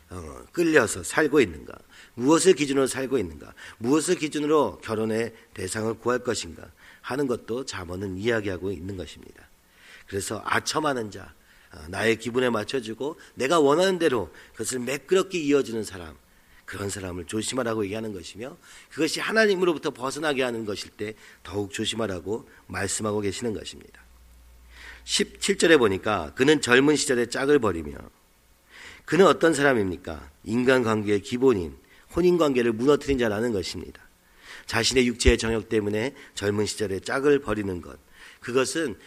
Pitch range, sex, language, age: 100-140 Hz, male, Korean, 40-59